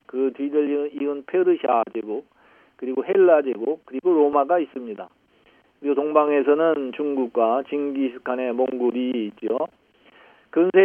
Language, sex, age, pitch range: Korean, male, 50-69, 130-165 Hz